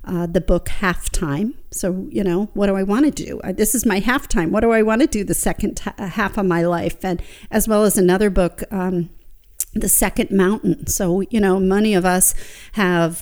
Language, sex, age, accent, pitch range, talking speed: English, female, 50-69, American, 180-210 Hz, 215 wpm